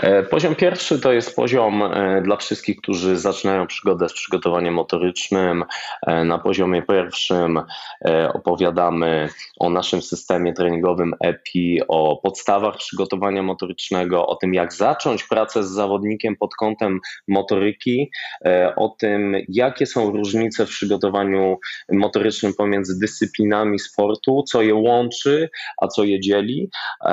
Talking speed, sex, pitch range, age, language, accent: 120 wpm, male, 95-110 Hz, 20-39, Polish, native